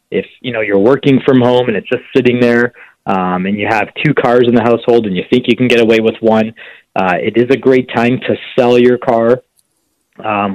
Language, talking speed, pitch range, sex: English, 235 wpm, 110-120 Hz, male